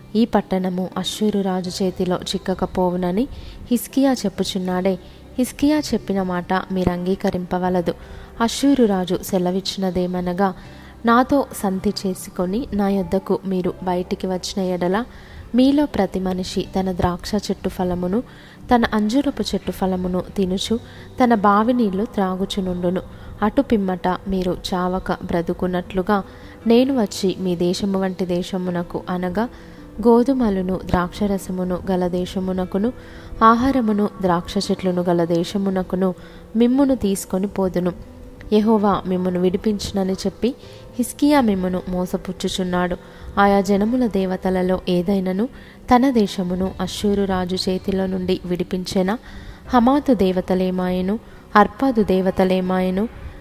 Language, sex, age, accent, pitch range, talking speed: Telugu, female, 20-39, native, 185-215 Hz, 95 wpm